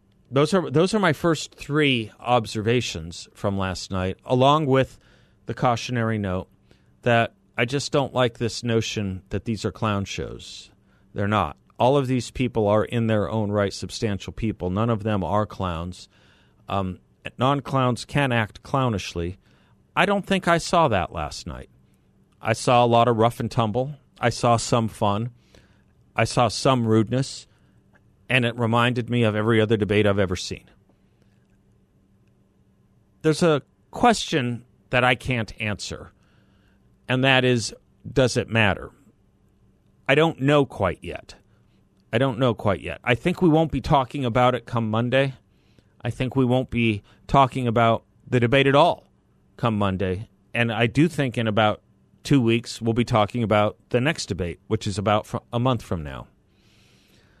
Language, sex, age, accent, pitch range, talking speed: English, male, 40-59, American, 100-130 Hz, 160 wpm